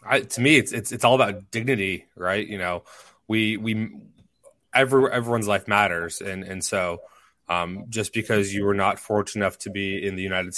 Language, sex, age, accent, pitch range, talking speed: English, male, 20-39, American, 100-115 Hz, 180 wpm